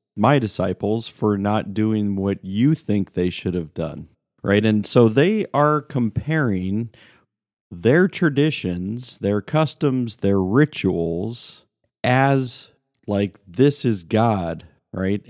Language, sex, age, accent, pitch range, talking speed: English, male, 40-59, American, 95-130 Hz, 120 wpm